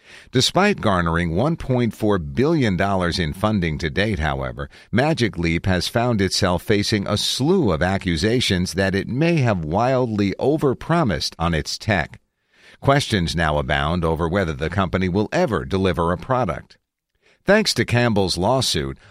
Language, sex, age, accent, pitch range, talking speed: English, male, 50-69, American, 85-115 Hz, 140 wpm